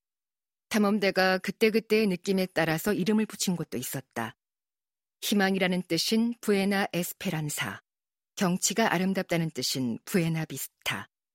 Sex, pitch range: female, 160-210 Hz